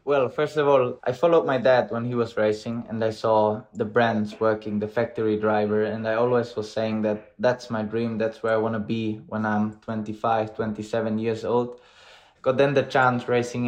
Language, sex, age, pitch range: English, male, 20-39, 115-125 Hz